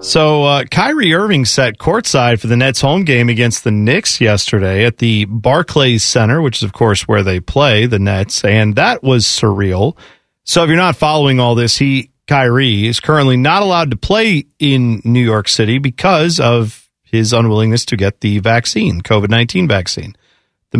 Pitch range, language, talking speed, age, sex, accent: 115-180 Hz, English, 180 wpm, 40-59, male, American